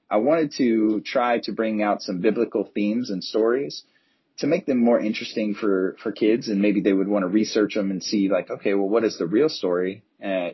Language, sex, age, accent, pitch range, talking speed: English, male, 30-49, American, 95-110 Hz, 220 wpm